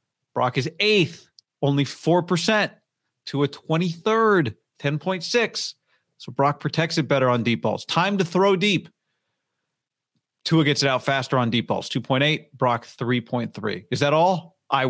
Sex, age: male, 40-59